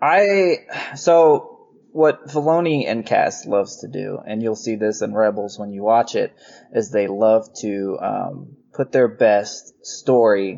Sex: male